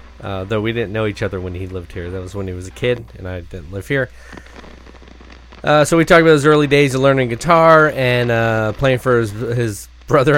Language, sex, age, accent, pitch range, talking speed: English, male, 30-49, American, 90-130 Hz, 235 wpm